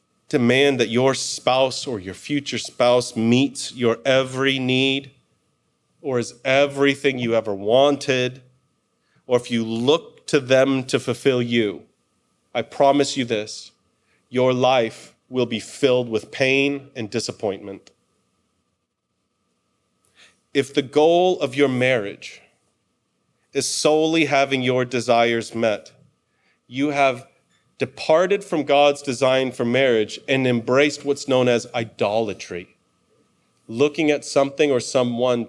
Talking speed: 120 wpm